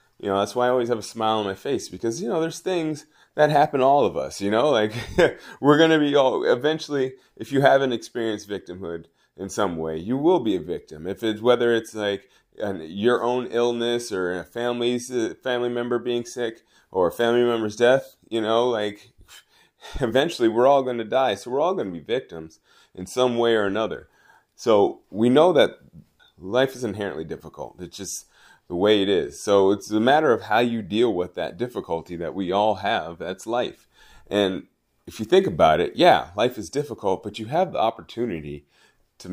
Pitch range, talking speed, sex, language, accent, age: 100-125 Hz, 205 wpm, male, English, American, 30-49